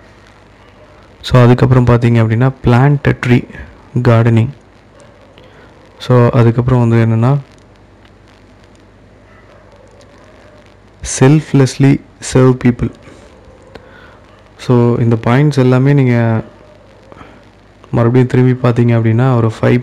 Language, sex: Tamil, male